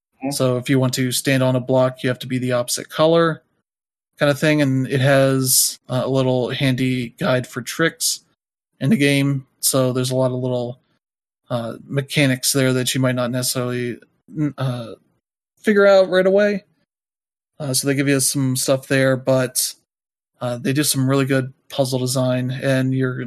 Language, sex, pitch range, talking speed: English, male, 130-140 Hz, 180 wpm